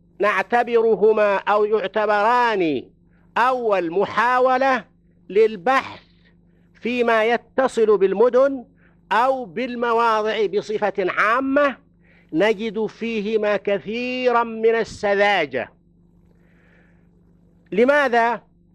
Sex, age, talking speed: male, 50-69, 60 wpm